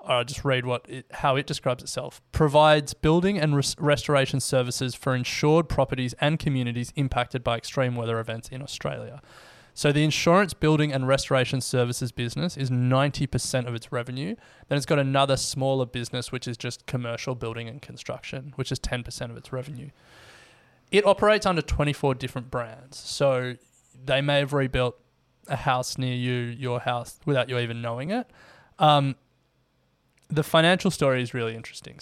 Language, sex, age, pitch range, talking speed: English, male, 20-39, 125-145 Hz, 160 wpm